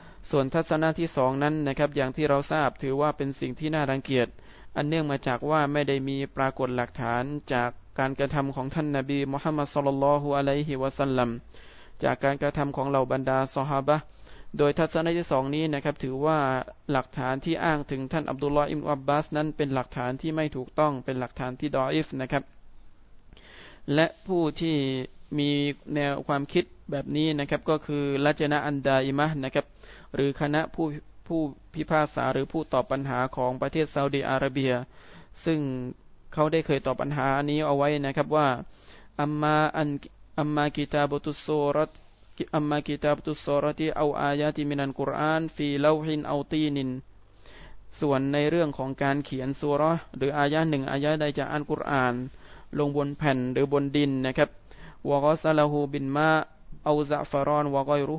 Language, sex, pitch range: Thai, male, 135-150 Hz